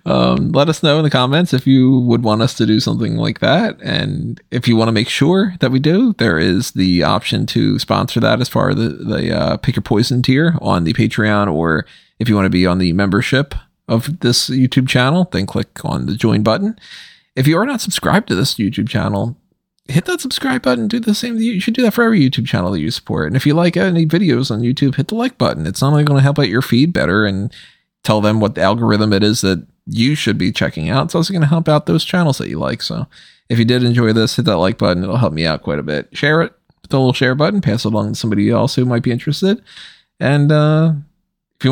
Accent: American